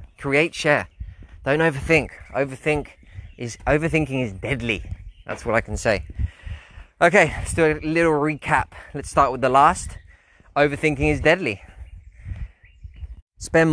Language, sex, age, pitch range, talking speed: English, male, 20-39, 95-145 Hz, 125 wpm